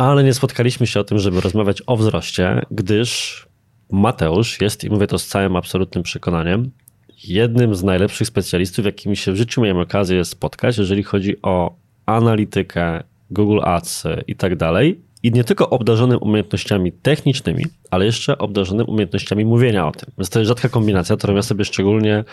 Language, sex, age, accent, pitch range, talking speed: Polish, male, 20-39, native, 95-120 Hz, 165 wpm